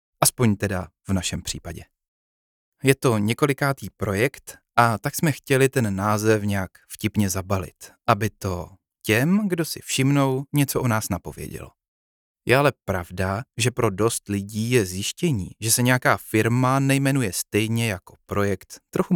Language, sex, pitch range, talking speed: Czech, male, 95-130 Hz, 145 wpm